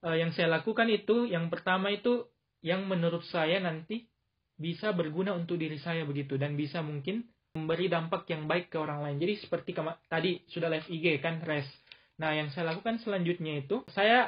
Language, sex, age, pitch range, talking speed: Indonesian, male, 20-39, 160-190 Hz, 180 wpm